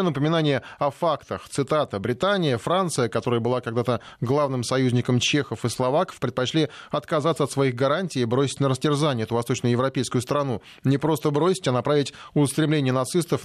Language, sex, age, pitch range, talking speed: Russian, male, 20-39, 125-145 Hz, 145 wpm